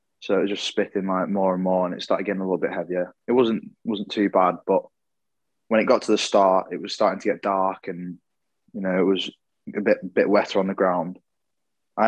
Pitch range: 95-100 Hz